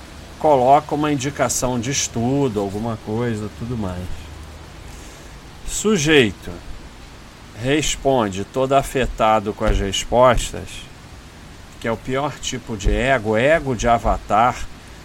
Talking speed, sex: 105 wpm, male